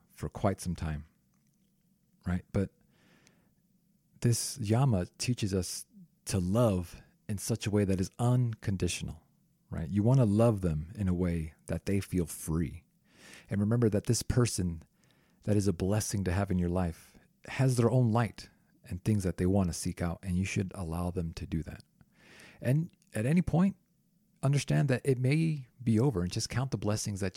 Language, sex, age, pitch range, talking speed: English, male, 40-59, 90-125 Hz, 180 wpm